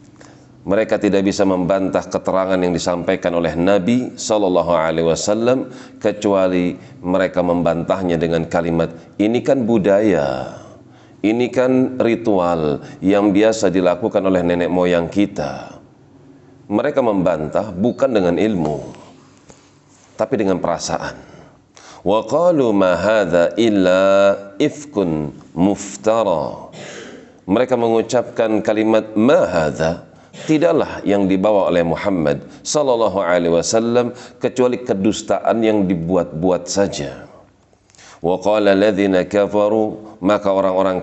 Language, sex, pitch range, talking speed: Indonesian, male, 90-110 Hz, 100 wpm